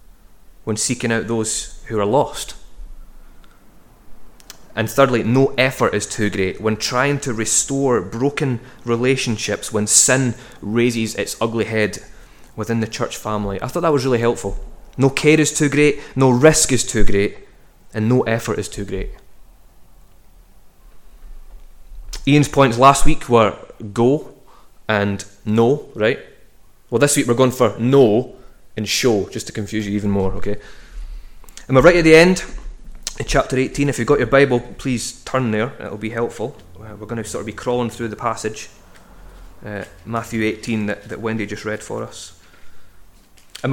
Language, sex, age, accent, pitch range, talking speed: English, male, 20-39, British, 105-130 Hz, 160 wpm